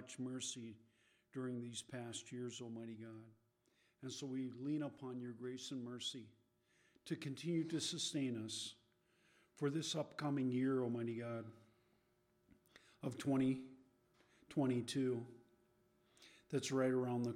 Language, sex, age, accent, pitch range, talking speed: English, male, 40-59, American, 120-140 Hz, 115 wpm